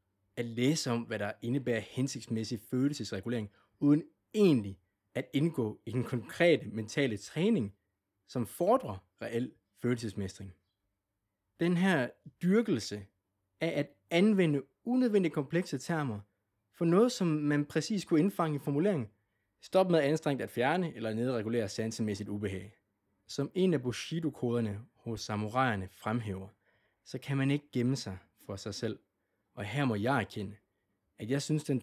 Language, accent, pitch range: Danish, native, 100-140 Hz